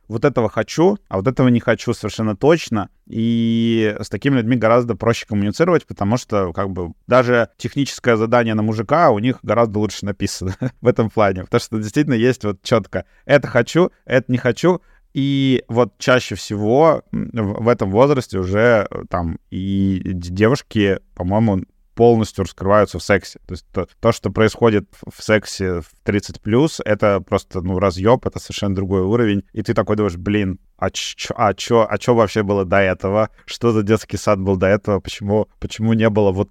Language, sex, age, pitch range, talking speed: Russian, male, 30-49, 100-120 Hz, 175 wpm